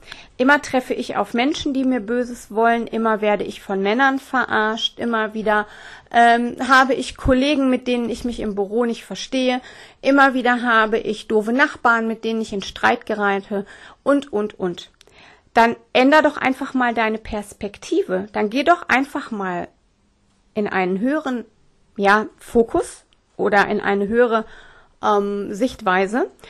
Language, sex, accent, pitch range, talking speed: German, female, German, 200-250 Hz, 145 wpm